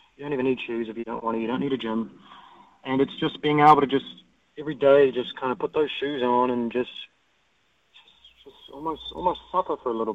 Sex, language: male, English